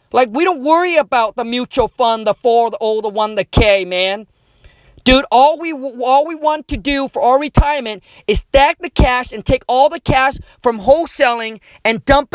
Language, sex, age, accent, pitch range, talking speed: English, male, 40-59, American, 225-285 Hz, 190 wpm